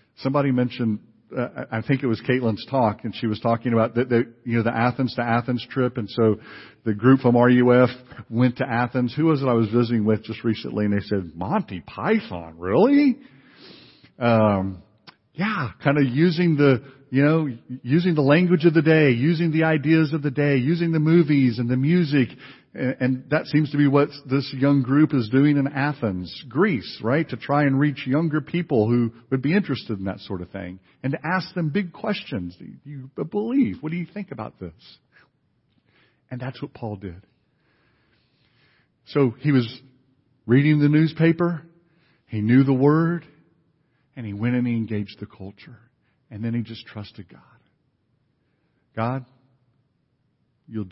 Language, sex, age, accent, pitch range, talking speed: English, male, 50-69, American, 115-150 Hz, 175 wpm